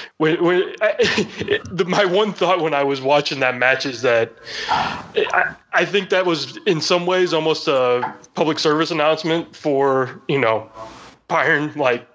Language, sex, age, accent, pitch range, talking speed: English, male, 20-39, American, 115-160 Hz, 145 wpm